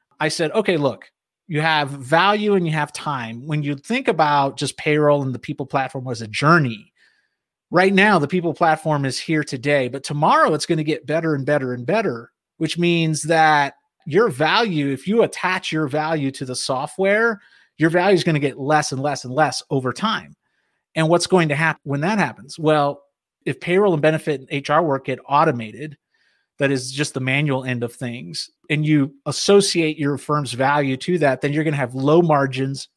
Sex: male